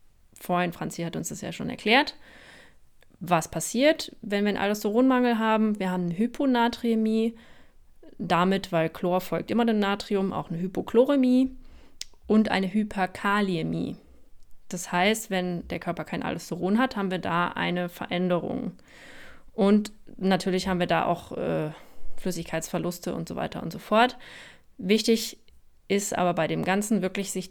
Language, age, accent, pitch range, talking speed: German, 20-39, German, 180-225 Hz, 145 wpm